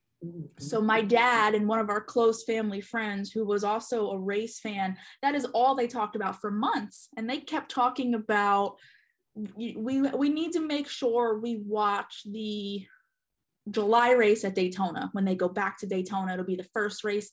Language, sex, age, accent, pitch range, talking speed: English, female, 20-39, American, 205-240 Hz, 185 wpm